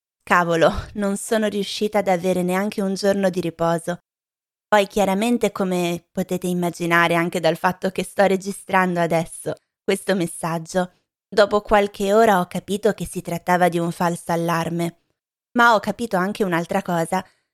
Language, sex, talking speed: Italian, female, 145 wpm